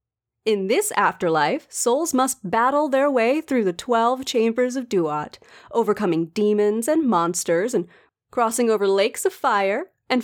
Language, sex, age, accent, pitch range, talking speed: English, female, 30-49, American, 200-270 Hz, 145 wpm